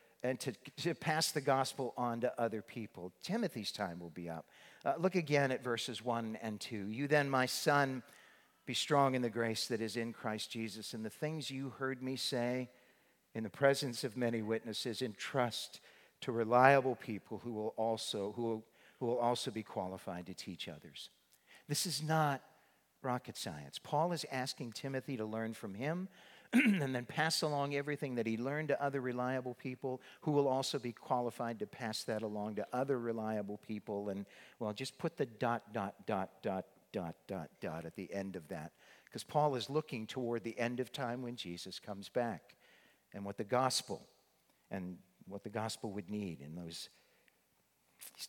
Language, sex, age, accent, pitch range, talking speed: English, male, 50-69, American, 110-135 Hz, 185 wpm